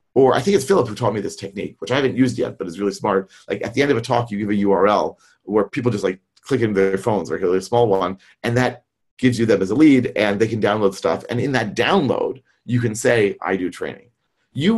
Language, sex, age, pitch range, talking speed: English, male, 40-59, 115-150 Hz, 270 wpm